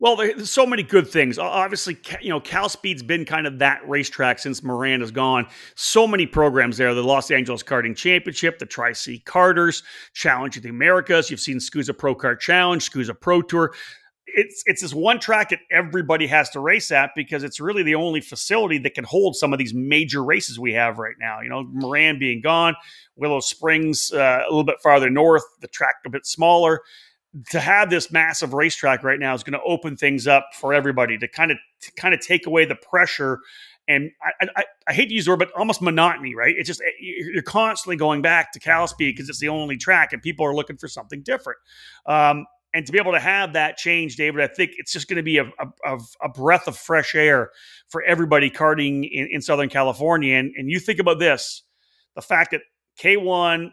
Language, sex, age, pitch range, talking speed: English, male, 40-59, 135-175 Hz, 215 wpm